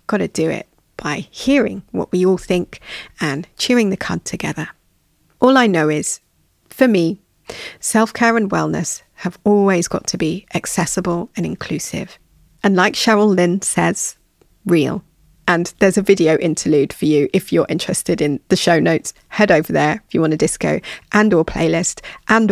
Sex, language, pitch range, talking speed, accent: female, English, 175-225 Hz, 170 wpm, British